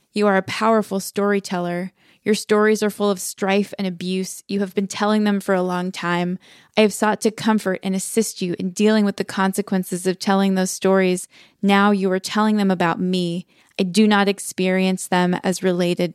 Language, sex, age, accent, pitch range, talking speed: English, female, 20-39, American, 185-205 Hz, 195 wpm